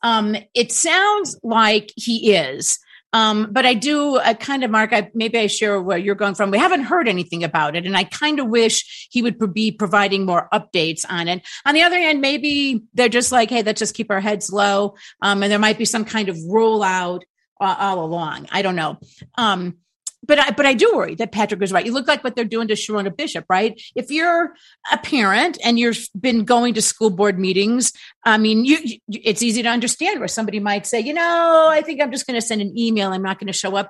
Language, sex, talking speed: English, female, 230 wpm